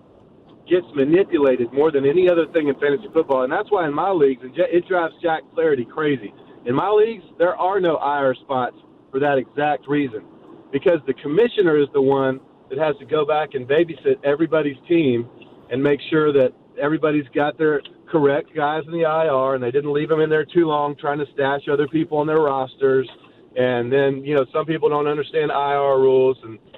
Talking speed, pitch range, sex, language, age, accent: 195 wpm, 130-160 Hz, male, English, 40-59, American